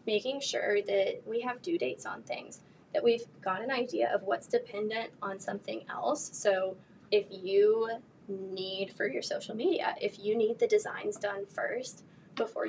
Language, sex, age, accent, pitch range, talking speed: English, female, 10-29, American, 195-275 Hz, 170 wpm